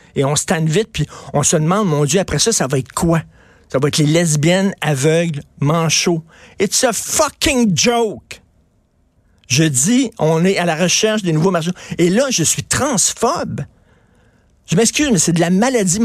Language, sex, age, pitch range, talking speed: French, male, 50-69, 145-195 Hz, 185 wpm